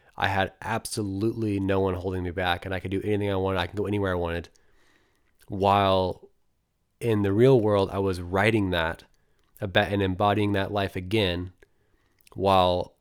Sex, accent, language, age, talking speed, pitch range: male, American, English, 20-39, 165 wpm, 90-100 Hz